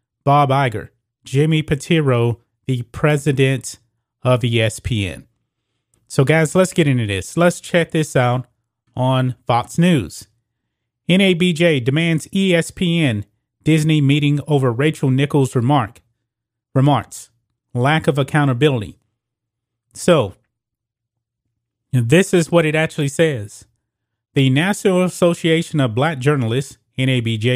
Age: 30-49